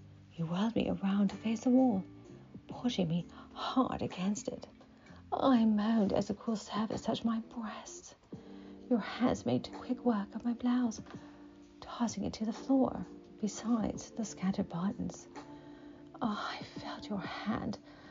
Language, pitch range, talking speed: English, 185-250 Hz, 145 wpm